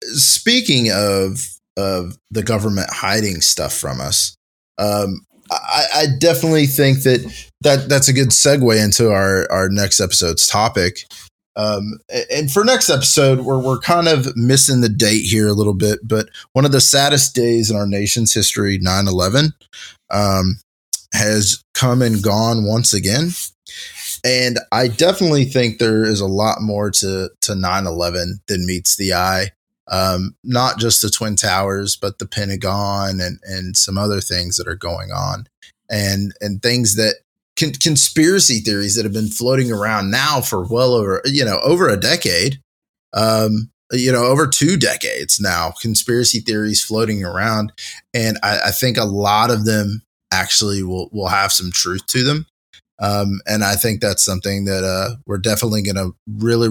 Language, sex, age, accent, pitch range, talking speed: English, male, 20-39, American, 100-125 Hz, 165 wpm